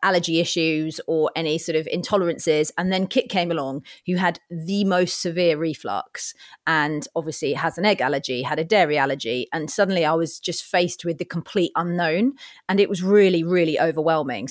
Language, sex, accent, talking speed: English, female, British, 180 wpm